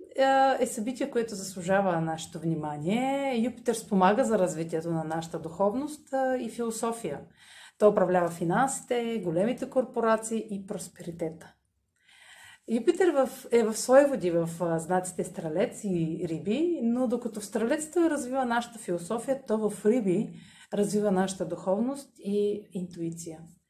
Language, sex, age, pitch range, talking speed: Bulgarian, female, 30-49, 175-240 Hz, 115 wpm